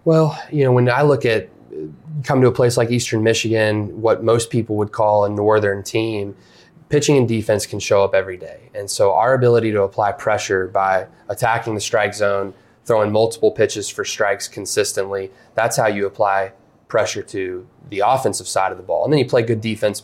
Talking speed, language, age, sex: 200 wpm, English, 20-39, male